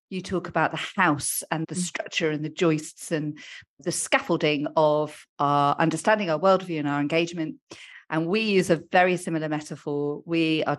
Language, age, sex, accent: English, 40-59, female, British